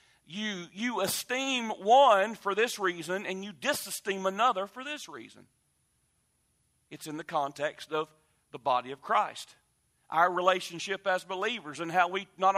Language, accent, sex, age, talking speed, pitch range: English, American, male, 40-59, 150 wpm, 185-235 Hz